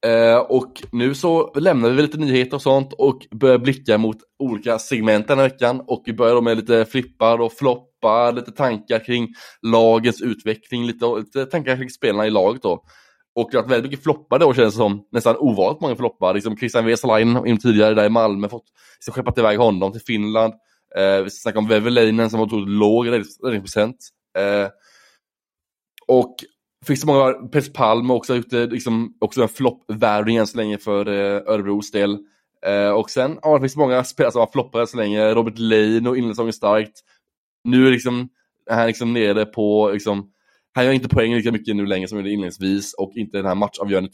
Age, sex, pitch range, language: 20-39, male, 105-120 Hz, Swedish